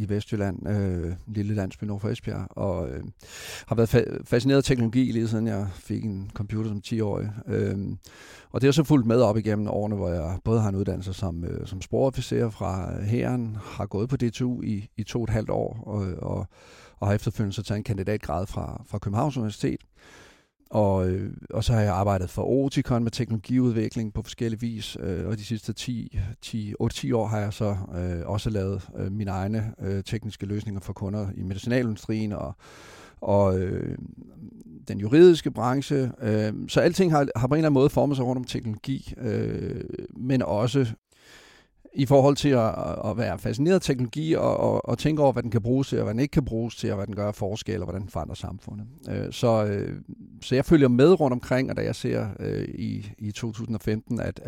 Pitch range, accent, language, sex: 100-120 Hz, native, Danish, male